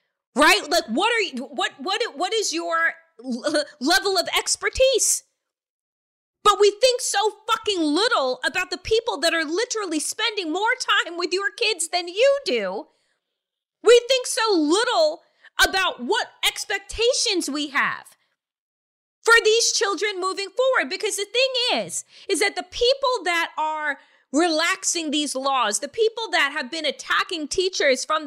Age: 30-49